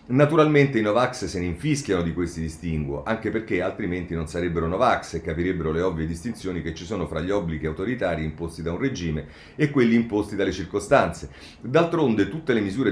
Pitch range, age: 80-105 Hz, 40-59